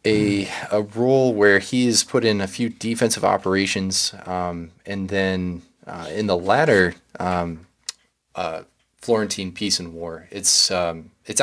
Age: 20-39